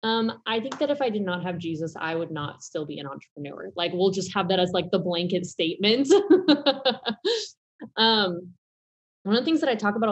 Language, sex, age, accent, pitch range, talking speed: English, female, 20-39, American, 165-205 Hz, 215 wpm